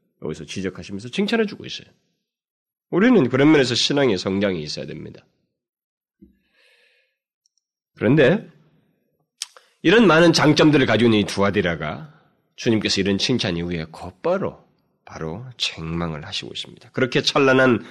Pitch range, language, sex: 95-150 Hz, Korean, male